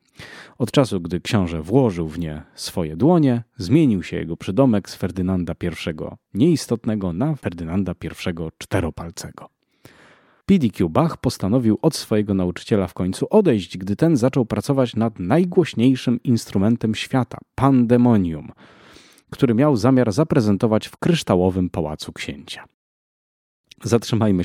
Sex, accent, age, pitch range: male, native, 30-49, 90-120 Hz